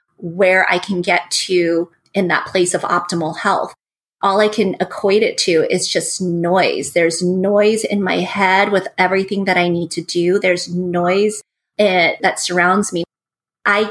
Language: English